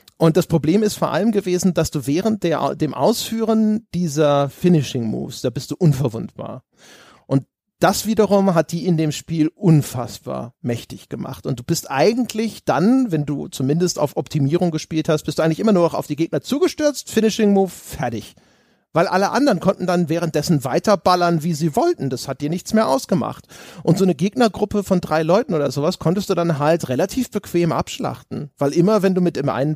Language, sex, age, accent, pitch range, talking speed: German, male, 30-49, German, 145-185 Hz, 185 wpm